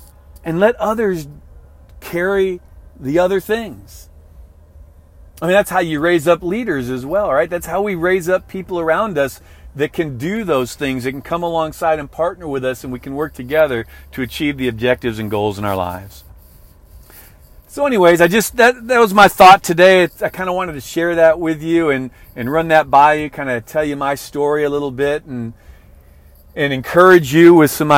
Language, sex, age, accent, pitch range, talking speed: English, male, 40-59, American, 105-160 Hz, 200 wpm